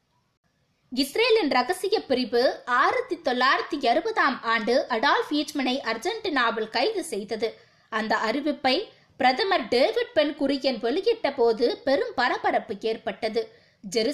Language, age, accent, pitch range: Tamil, 20-39, native, 230-325 Hz